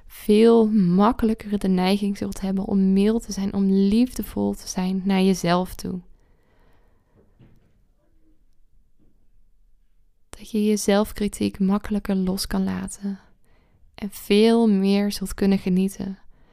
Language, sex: Dutch, female